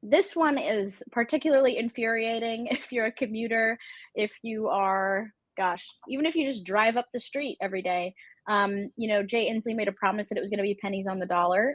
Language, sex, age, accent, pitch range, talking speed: English, female, 20-39, American, 195-235 Hz, 205 wpm